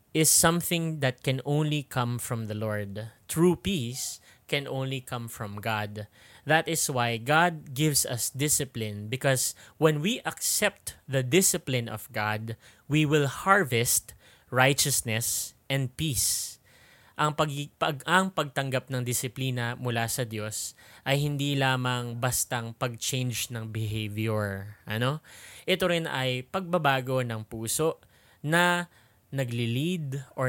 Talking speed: 125 wpm